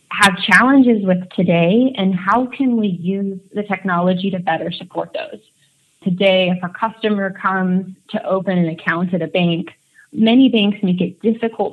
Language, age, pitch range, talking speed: English, 20-39, 175-200 Hz, 165 wpm